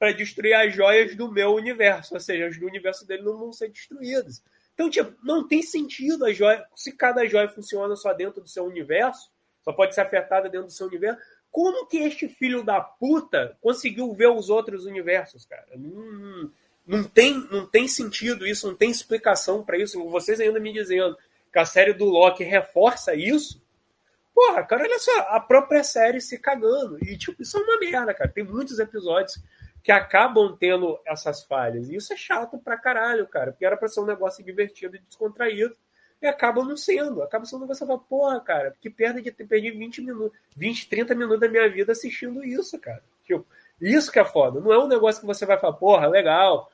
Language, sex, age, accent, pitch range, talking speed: Portuguese, male, 20-39, Brazilian, 195-255 Hz, 205 wpm